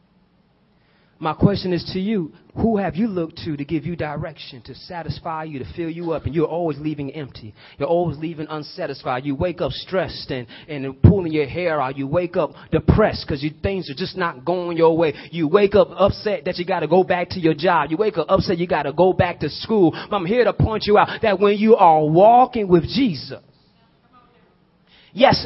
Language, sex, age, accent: English, male, 30-49, American